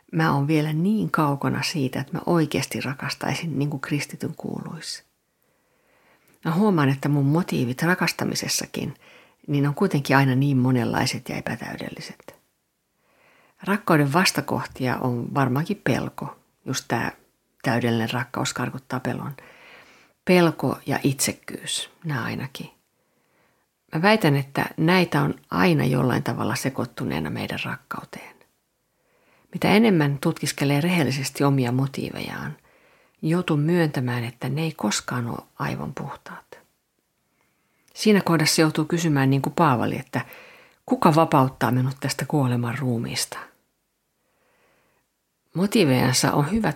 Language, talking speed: Finnish, 110 wpm